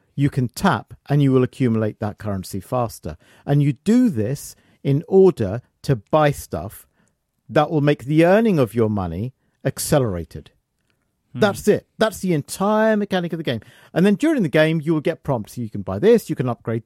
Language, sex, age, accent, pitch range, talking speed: English, male, 50-69, British, 105-150 Hz, 190 wpm